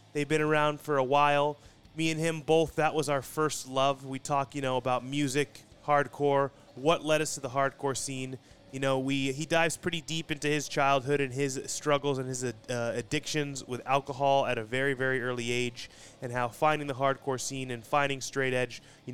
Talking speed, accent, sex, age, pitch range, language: 205 wpm, American, male, 20-39, 125-150 Hz, English